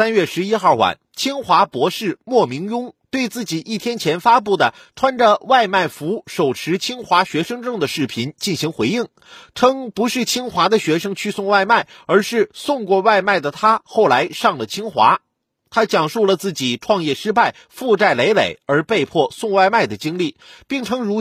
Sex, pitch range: male, 185-250 Hz